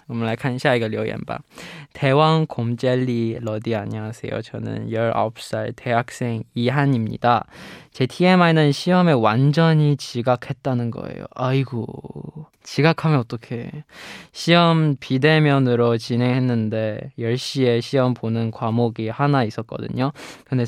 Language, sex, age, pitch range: Korean, male, 20-39, 115-145 Hz